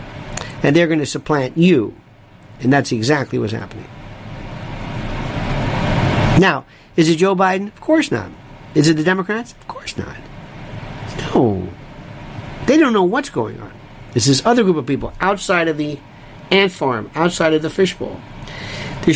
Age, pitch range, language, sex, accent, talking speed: 50-69, 135-190 Hz, English, male, American, 155 wpm